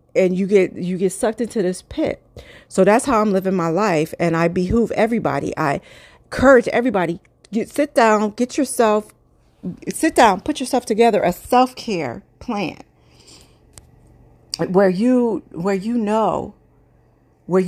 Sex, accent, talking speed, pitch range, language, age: female, American, 145 wpm, 180-230 Hz, English, 40-59